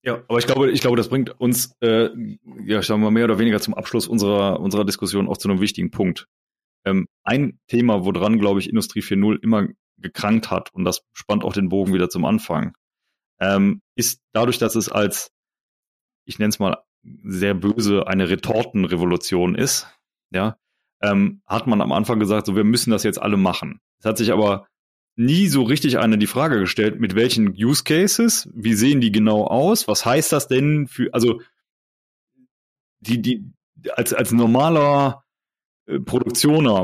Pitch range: 105-135 Hz